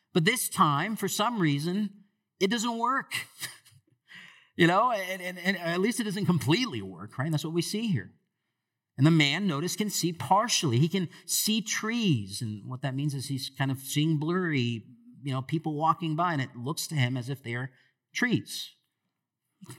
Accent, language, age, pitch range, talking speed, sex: American, English, 50-69, 115-170 Hz, 190 wpm, male